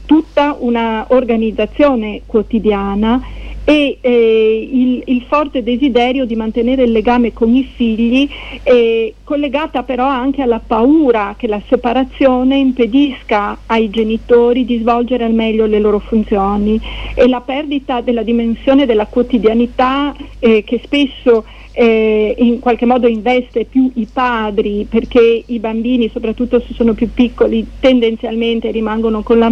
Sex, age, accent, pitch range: female, 50-69, native, 225-265 Hz